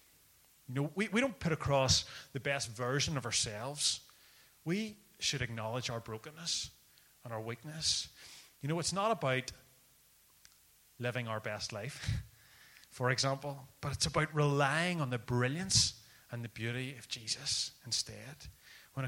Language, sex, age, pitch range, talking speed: English, male, 30-49, 125-165 Hz, 140 wpm